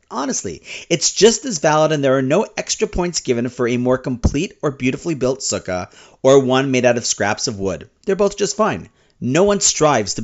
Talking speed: 210 wpm